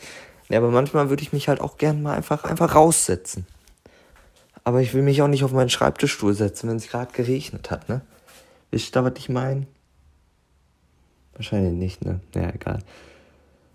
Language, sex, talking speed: German, male, 175 wpm